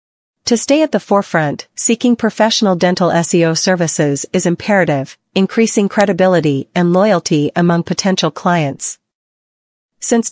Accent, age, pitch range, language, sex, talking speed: American, 40-59, 160-205 Hz, English, female, 115 wpm